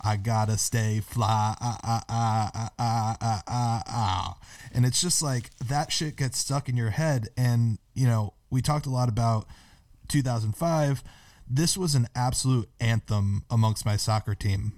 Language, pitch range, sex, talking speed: English, 110-140 Hz, male, 170 wpm